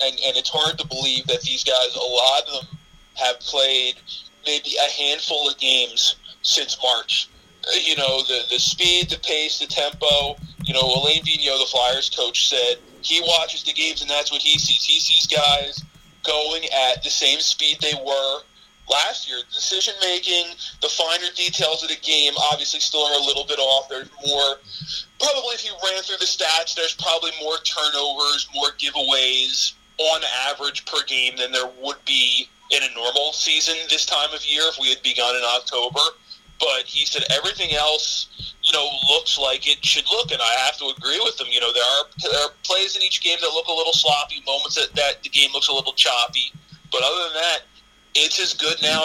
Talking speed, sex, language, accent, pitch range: 200 wpm, male, English, American, 135-165 Hz